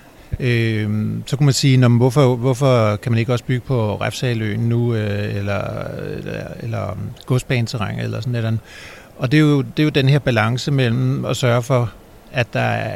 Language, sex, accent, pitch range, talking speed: Danish, male, native, 115-130 Hz, 155 wpm